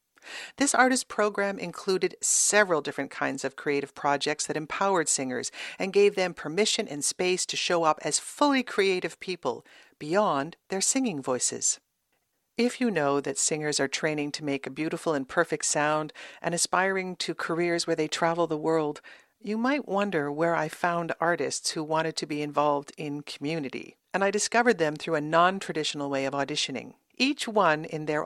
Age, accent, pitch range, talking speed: 50-69, American, 150-205 Hz, 170 wpm